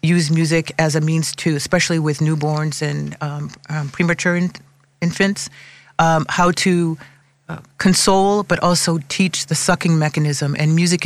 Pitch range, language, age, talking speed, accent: 145-170 Hz, English, 40-59, 150 wpm, American